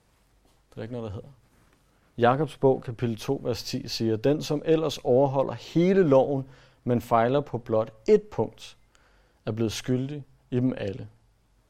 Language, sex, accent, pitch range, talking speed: Danish, male, native, 110-135 Hz, 155 wpm